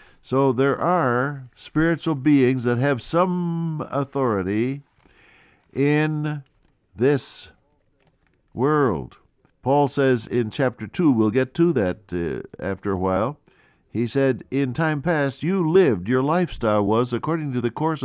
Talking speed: 130 wpm